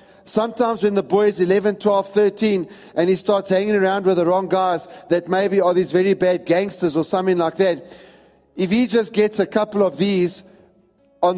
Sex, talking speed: male, 195 wpm